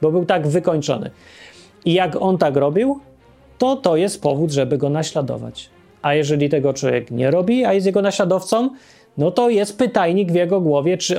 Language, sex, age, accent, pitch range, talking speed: Polish, male, 30-49, native, 150-220 Hz, 180 wpm